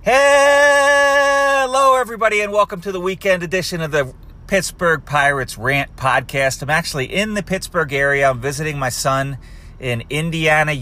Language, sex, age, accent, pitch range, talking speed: English, male, 40-59, American, 105-145 Hz, 145 wpm